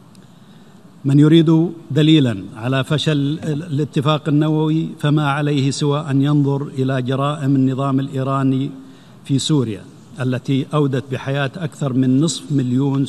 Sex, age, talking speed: male, 50-69, 115 wpm